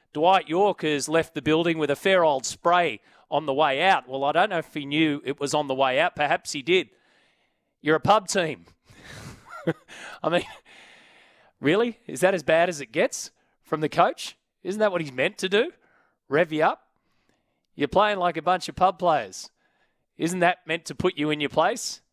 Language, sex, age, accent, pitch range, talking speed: English, male, 30-49, Australian, 145-175 Hz, 200 wpm